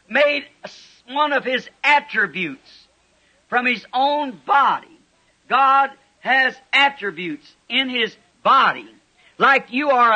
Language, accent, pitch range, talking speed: English, American, 245-290 Hz, 105 wpm